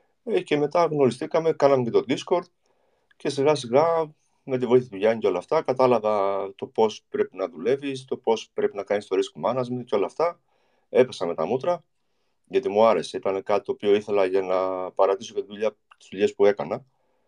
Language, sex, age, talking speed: Greek, male, 30-49, 200 wpm